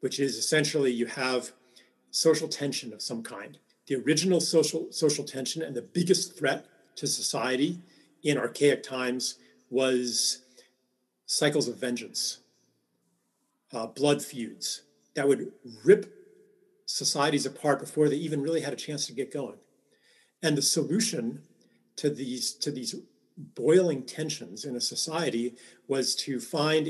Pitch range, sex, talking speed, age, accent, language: 130-165 Hz, male, 135 wpm, 40-59, American, English